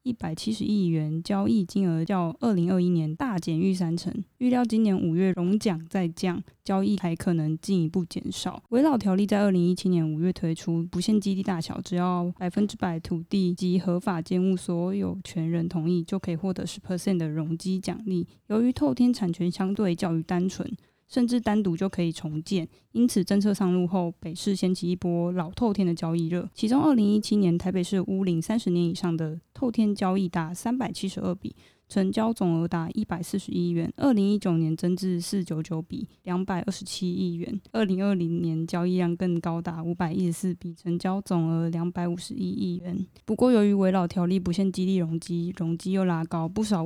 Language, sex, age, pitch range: Chinese, female, 20-39, 170-200 Hz